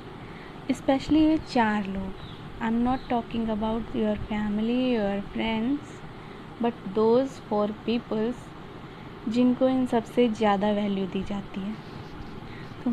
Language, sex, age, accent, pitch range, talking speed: Hindi, female, 20-39, native, 215-250 Hz, 120 wpm